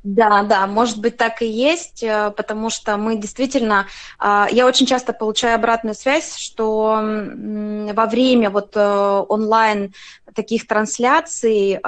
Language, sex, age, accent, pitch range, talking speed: Russian, female, 20-39, native, 210-240 Hz, 120 wpm